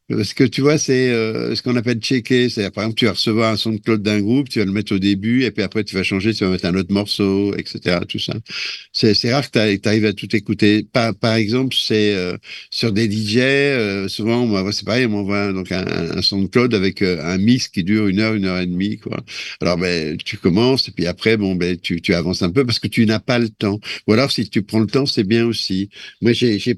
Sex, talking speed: male, 270 wpm